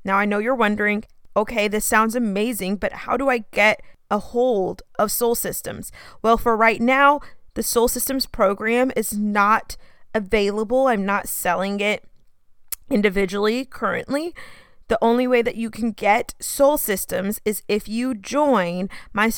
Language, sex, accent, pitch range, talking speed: English, female, American, 205-250 Hz, 155 wpm